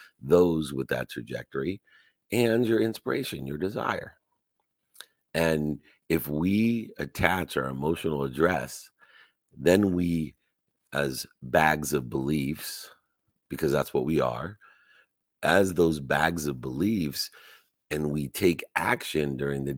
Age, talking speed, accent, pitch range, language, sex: 50-69, 115 wpm, American, 70-90 Hz, English, male